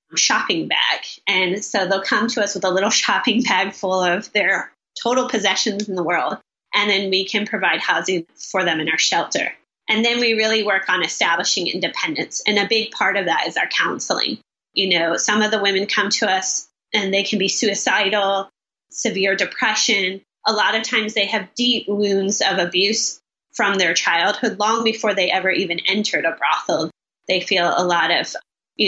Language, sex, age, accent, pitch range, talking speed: English, female, 20-39, American, 185-215 Hz, 190 wpm